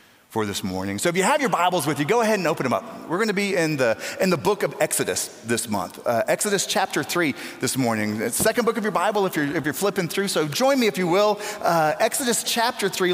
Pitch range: 150-215 Hz